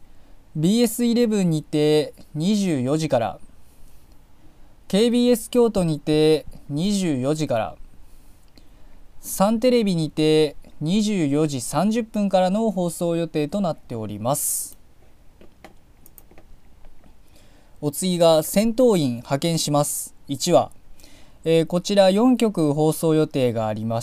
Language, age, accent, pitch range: Japanese, 20-39, native, 145-200 Hz